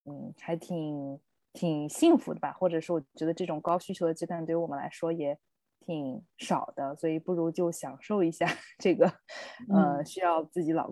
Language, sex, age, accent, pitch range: Chinese, female, 20-39, native, 150-185 Hz